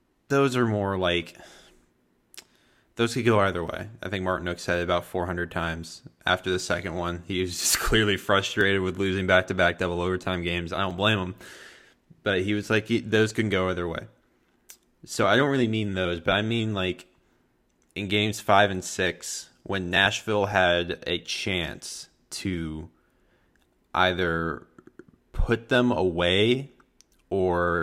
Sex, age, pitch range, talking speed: male, 20-39, 85-105 Hz, 155 wpm